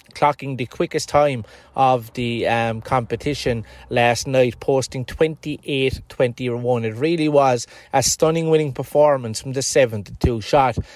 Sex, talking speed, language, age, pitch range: male, 125 wpm, English, 30-49, 125-155 Hz